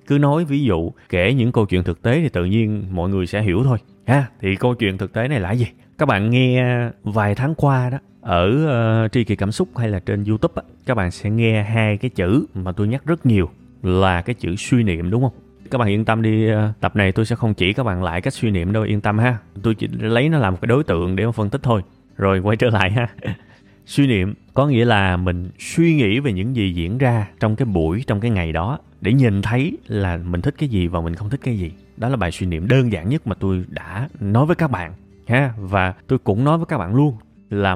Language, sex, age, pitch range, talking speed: Vietnamese, male, 20-39, 95-130 Hz, 255 wpm